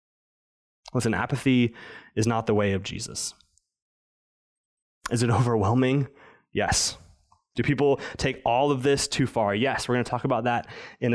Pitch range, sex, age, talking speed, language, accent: 130-180 Hz, male, 20-39, 150 wpm, English, American